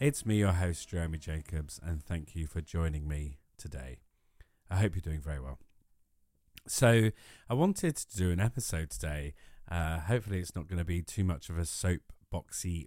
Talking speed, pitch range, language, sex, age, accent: 180 wpm, 85-105 Hz, English, male, 30-49, British